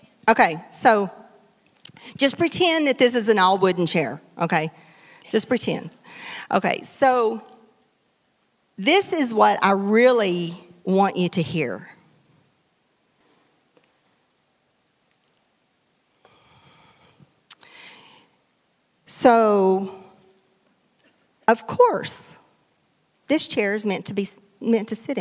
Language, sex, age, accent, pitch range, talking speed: English, female, 40-59, American, 185-245 Hz, 85 wpm